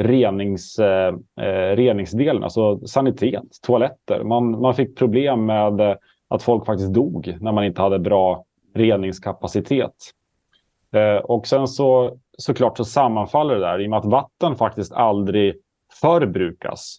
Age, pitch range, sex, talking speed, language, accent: 30-49, 100-120 Hz, male, 135 wpm, English, Norwegian